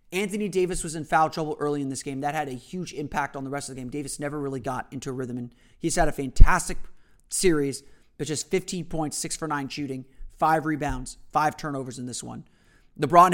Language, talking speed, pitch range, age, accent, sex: English, 220 wpm, 135-170 Hz, 30-49, American, male